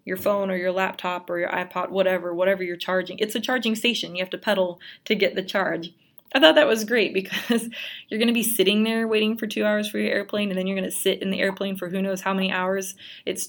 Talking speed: 265 wpm